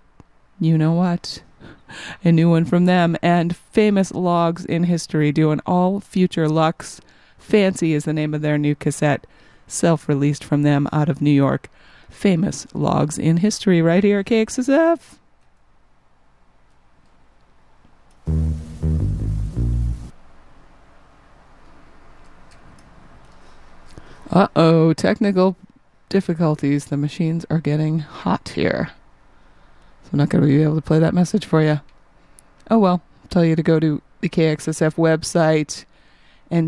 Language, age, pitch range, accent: English, 30-49, 140-180 Hz, American